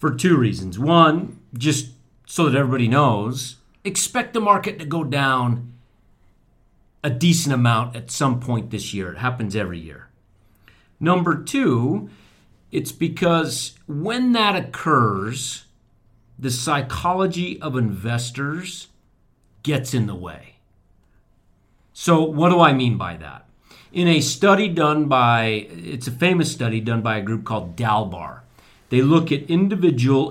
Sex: male